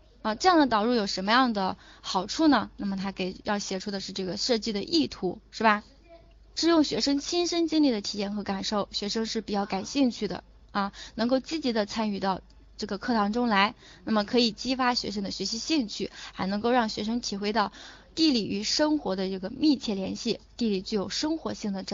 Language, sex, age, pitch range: Chinese, female, 20-39, 200-270 Hz